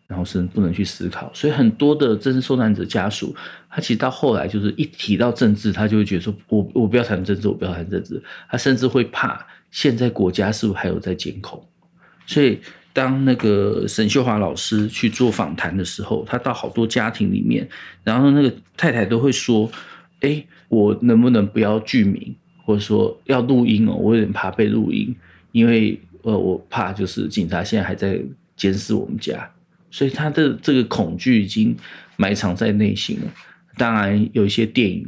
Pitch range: 100-125 Hz